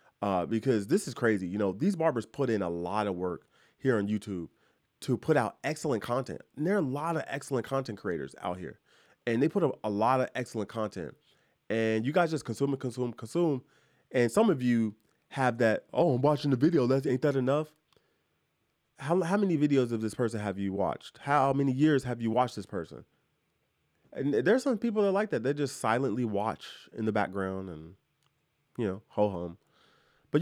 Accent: American